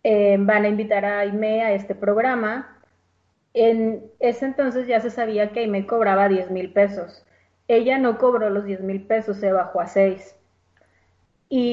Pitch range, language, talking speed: 205-240 Hz, Spanish, 170 wpm